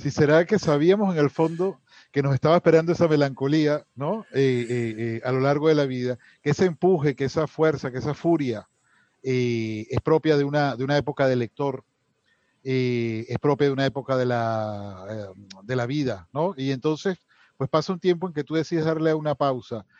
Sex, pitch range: male, 125-160 Hz